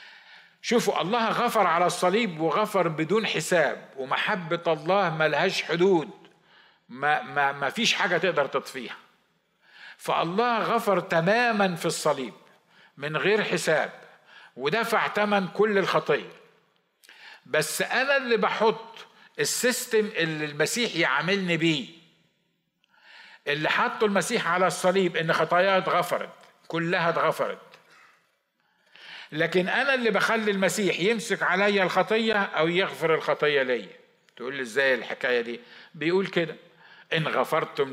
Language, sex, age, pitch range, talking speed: Arabic, male, 50-69, 155-210 Hz, 110 wpm